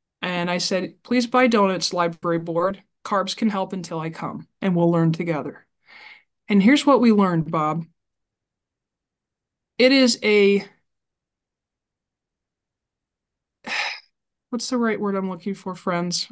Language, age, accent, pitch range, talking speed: English, 20-39, American, 175-210 Hz, 130 wpm